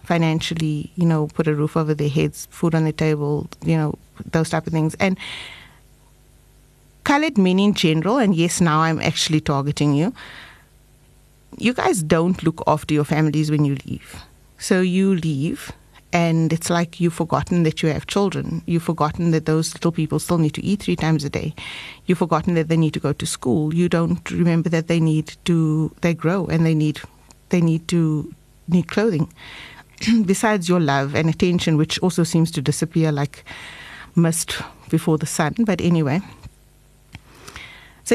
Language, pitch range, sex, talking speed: English, 155-185 Hz, female, 175 wpm